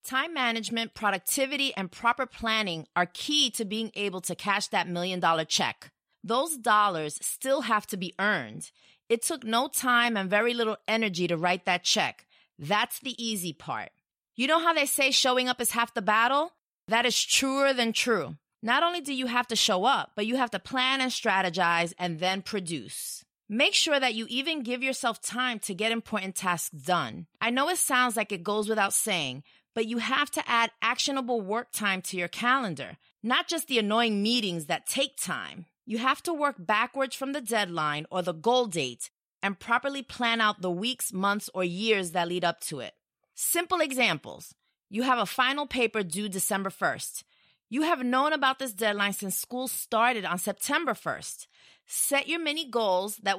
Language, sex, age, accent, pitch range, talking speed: English, female, 30-49, American, 195-255 Hz, 190 wpm